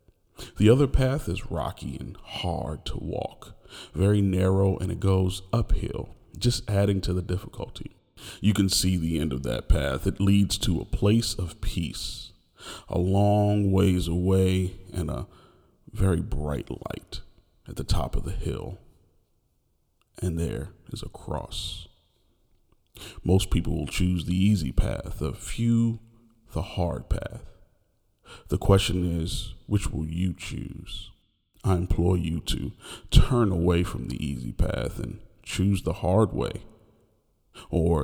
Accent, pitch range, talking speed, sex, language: American, 85-105 Hz, 140 wpm, male, English